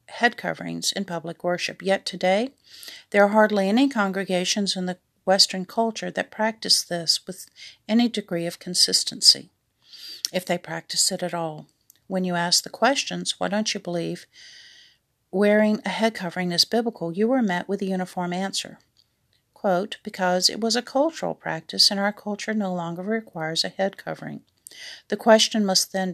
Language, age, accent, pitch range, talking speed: English, 50-69, American, 180-215 Hz, 165 wpm